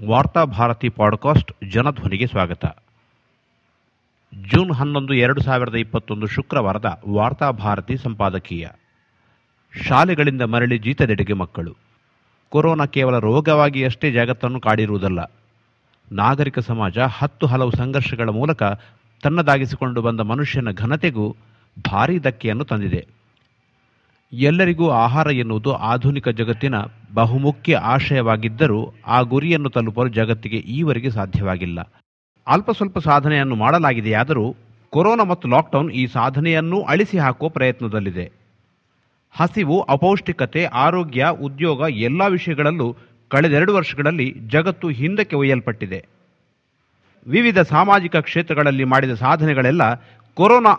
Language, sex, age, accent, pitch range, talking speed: Kannada, male, 50-69, native, 115-150 Hz, 95 wpm